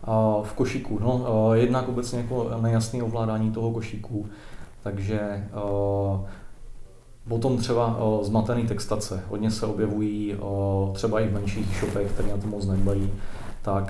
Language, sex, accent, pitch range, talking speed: Czech, male, native, 100-115 Hz, 140 wpm